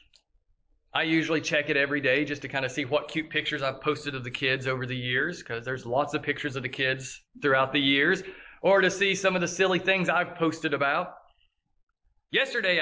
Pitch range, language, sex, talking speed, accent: 145-175 Hz, English, male, 210 wpm, American